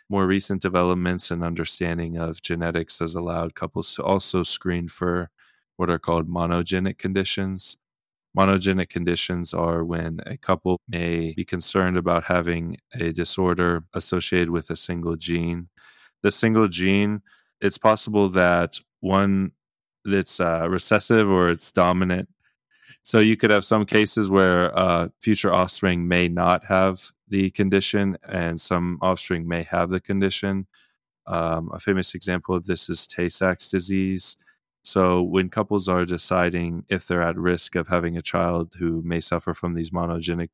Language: English